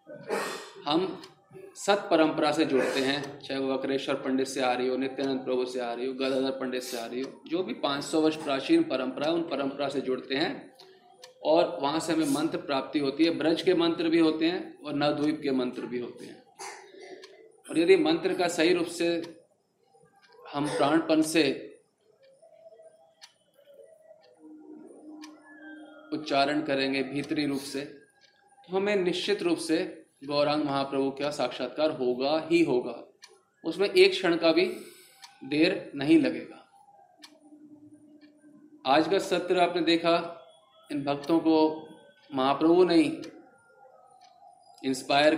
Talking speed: 130 wpm